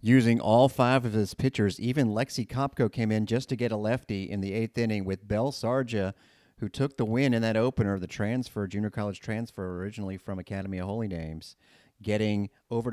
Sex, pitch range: male, 95-115 Hz